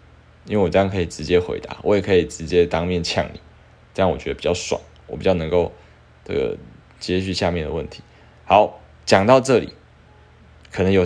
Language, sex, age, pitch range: Chinese, male, 20-39, 90-120 Hz